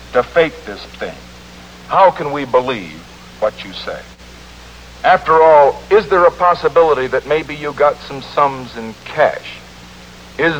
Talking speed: 145 wpm